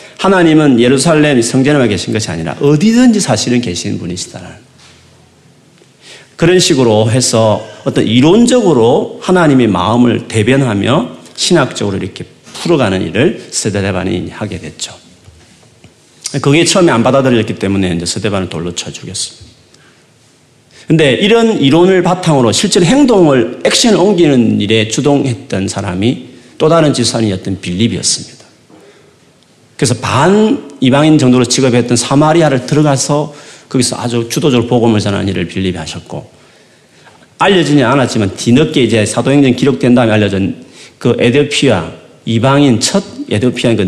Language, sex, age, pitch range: Korean, male, 40-59, 105-150 Hz